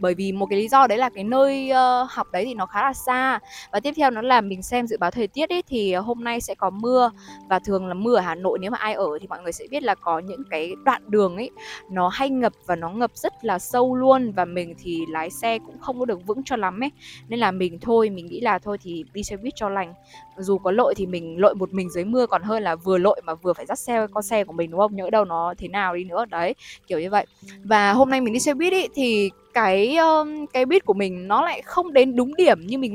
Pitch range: 185-255 Hz